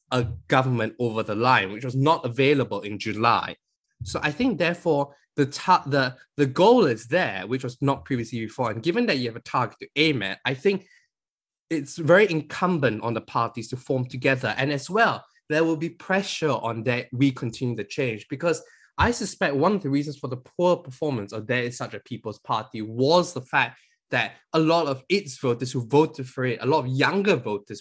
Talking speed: 205 wpm